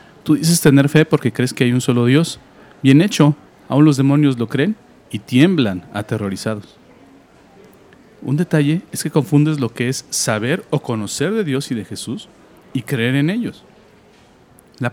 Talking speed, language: 170 wpm, Spanish